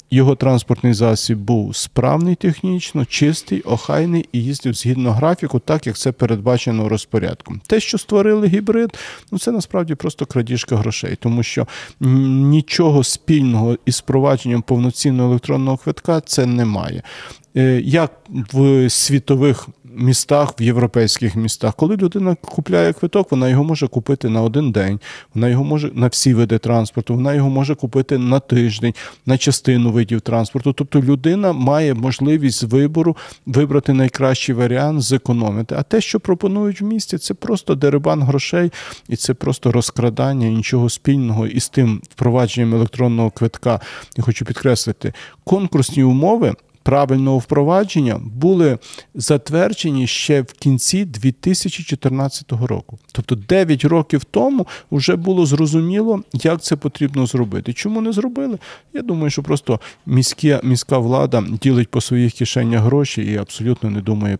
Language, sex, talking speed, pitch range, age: Ukrainian, male, 140 wpm, 120-150 Hz, 40-59